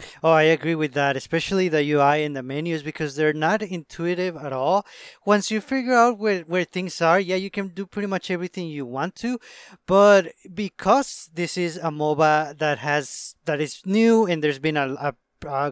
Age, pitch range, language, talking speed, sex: 20-39, 150-185 Hz, English, 200 wpm, male